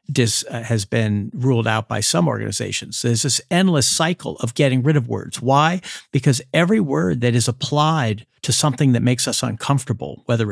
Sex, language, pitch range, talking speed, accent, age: male, English, 120-150 Hz, 170 wpm, American, 50-69